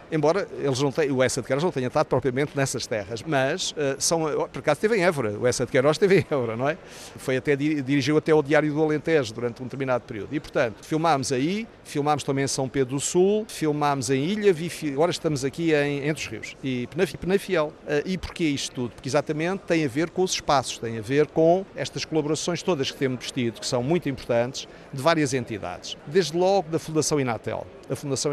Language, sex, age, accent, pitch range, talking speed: Portuguese, male, 50-69, Brazilian, 130-160 Hz, 220 wpm